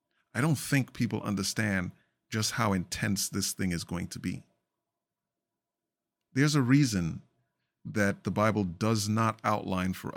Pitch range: 90-110 Hz